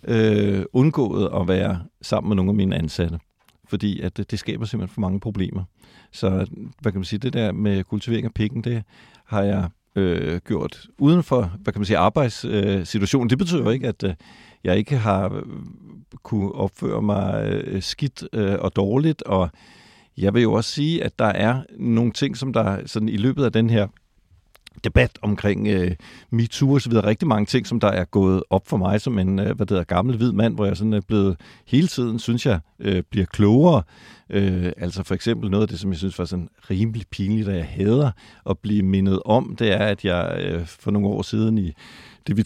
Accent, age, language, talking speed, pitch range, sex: native, 50-69, Danish, 200 wpm, 95-115 Hz, male